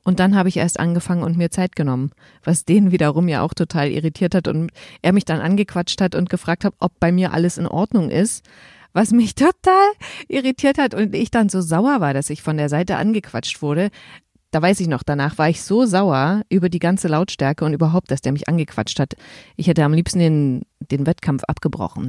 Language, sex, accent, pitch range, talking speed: German, female, German, 160-205 Hz, 215 wpm